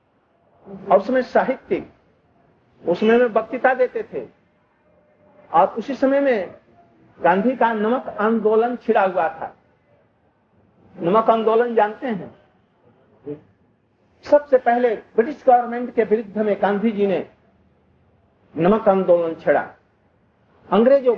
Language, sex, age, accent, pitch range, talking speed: Hindi, male, 50-69, native, 200-250 Hz, 105 wpm